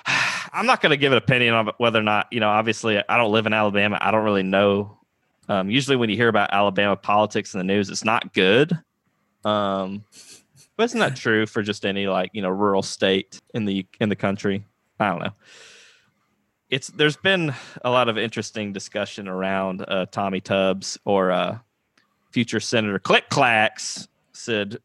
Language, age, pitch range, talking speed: English, 20-39, 100-120 Hz, 190 wpm